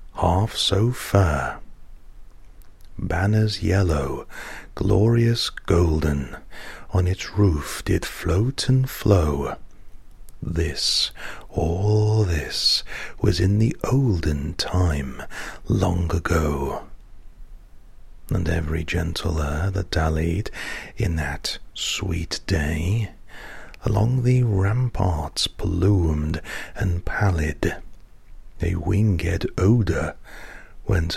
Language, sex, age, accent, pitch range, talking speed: English, male, 40-59, British, 85-100 Hz, 85 wpm